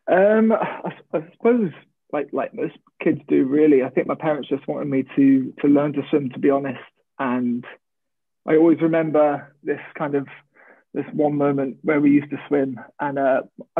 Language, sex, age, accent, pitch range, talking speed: English, male, 20-39, British, 135-155 Hz, 185 wpm